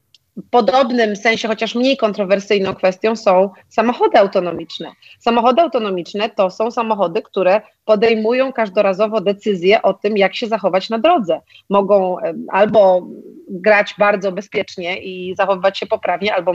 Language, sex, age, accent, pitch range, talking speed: Polish, female, 30-49, native, 190-230 Hz, 130 wpm